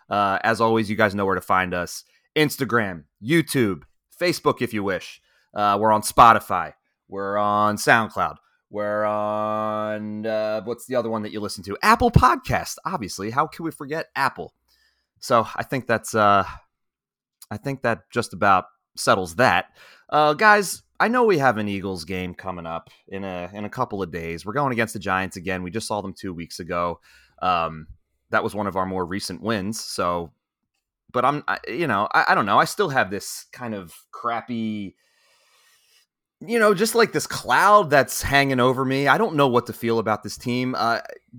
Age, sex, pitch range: 30-49, male, 95-120 Hz